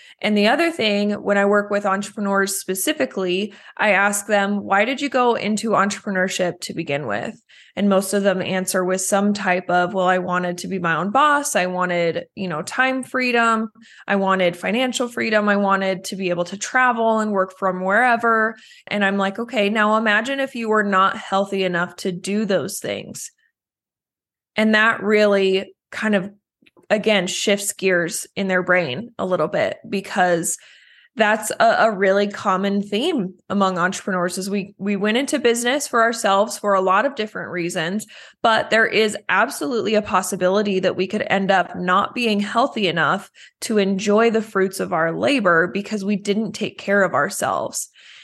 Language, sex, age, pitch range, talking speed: English, female, 20-39, 190-220 Hz, 175 wpm